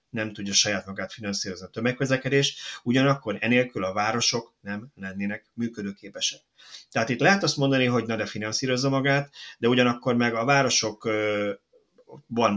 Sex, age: male, 30-49